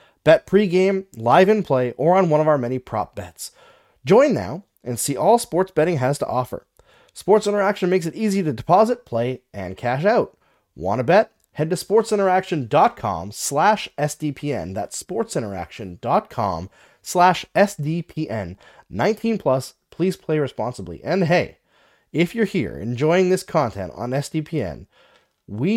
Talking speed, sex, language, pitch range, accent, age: 145 wpm, male, English, 120-160 Hz, American, 30-49